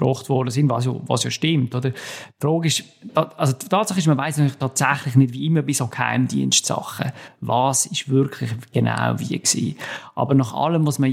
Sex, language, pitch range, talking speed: male, German, 125-150 Hz, 195 wpm